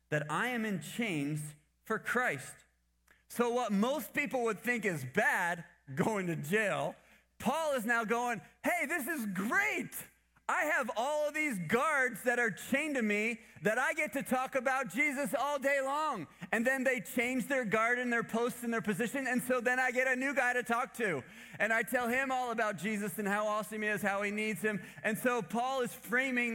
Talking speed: 205 wpm